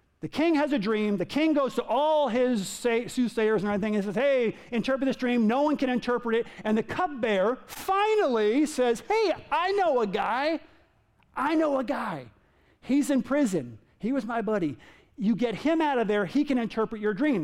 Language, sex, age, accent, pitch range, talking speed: English, male, 50-69, American, 205-265 Hz, 195 wpm